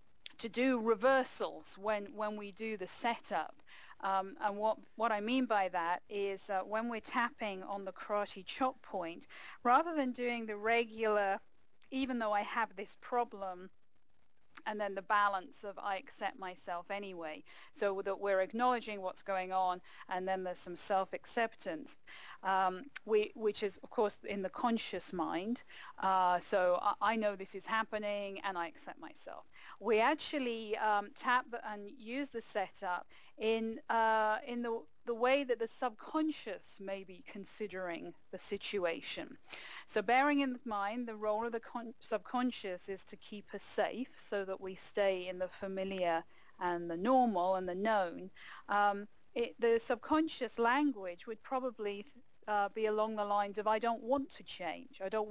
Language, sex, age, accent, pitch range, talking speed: English, female, 40-59, British, 190-235 Hz, 165 wpm